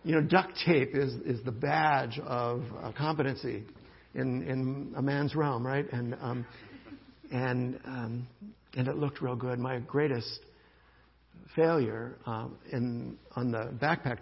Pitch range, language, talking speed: 125-150 Hz, English, 145 wpm